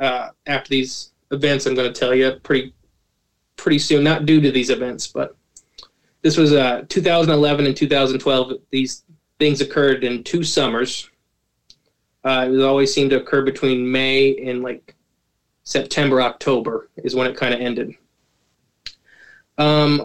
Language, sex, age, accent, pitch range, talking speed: English, male, 20-39, American, 130-145 Hz, 145 wpm